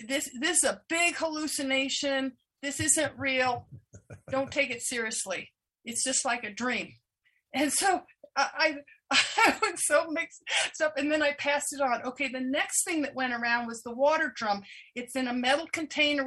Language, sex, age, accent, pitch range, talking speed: English, female, 50-69, American, 250-315 Hz, 180 wpm